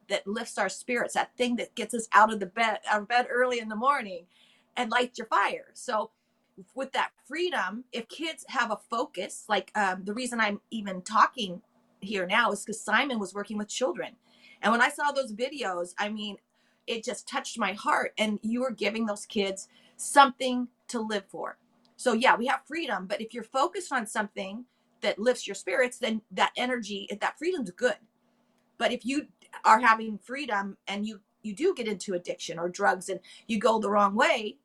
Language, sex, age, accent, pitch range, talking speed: English, female, 30-49, American, 210-255 Hz, 195 wpm